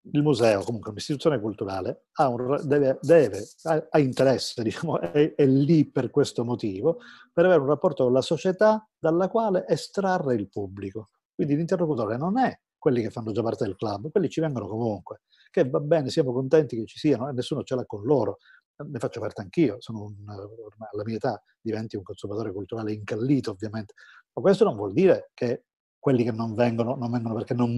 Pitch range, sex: 115-165 Hz, male